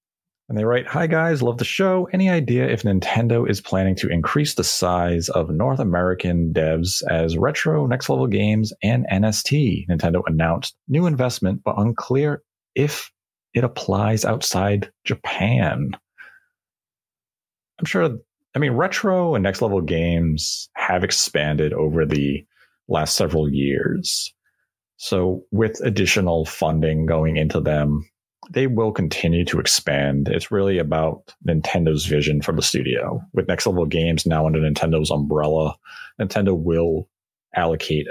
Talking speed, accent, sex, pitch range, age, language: 135 wpm, American, male, 80-110 Hz, 30-49, English